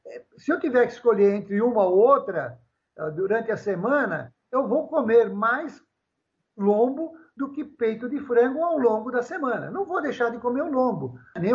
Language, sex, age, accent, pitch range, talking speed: Portuguese, male, 60-79, Brazilian, 180-235 Hz, 175 wpm